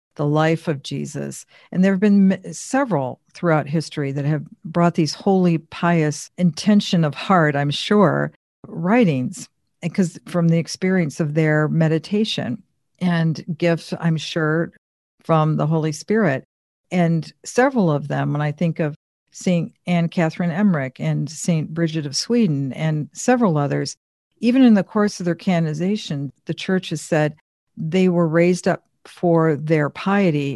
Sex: female